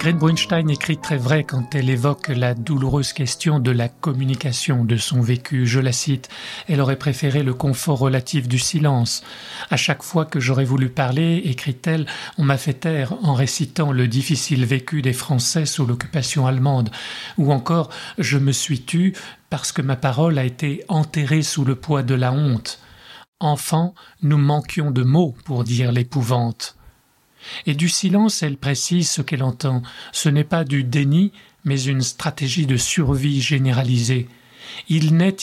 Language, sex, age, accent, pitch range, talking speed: French, male, 40-59, French, 130-155 Hz, 170 wpm